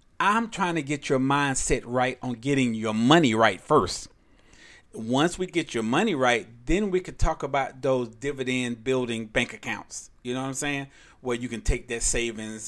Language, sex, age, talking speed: English, male, 40-59, 190 wpm